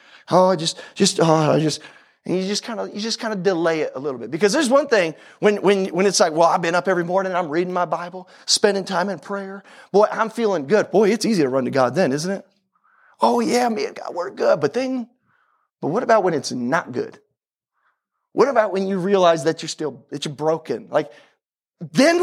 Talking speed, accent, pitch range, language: 235 wpm, American, 175-225 Hz, English